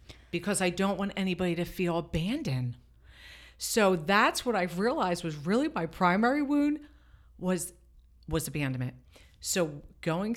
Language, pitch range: English, 140-180 Hz